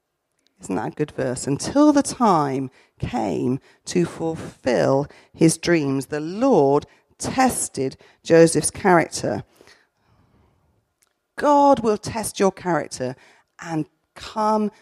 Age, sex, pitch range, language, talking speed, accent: 40-59, female, 155-235 Hz, English, 100 wpm, British